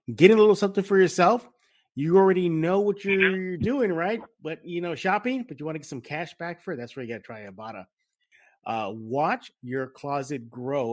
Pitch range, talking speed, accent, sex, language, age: 125-165 Hz, 220 wpm, American, male, English, 30-49